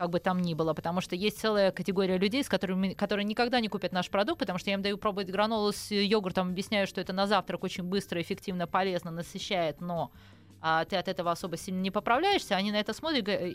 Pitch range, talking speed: 170-205 Hz, 215 wpm